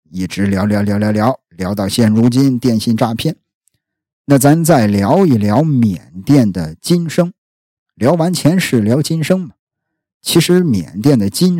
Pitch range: 110-175 Hz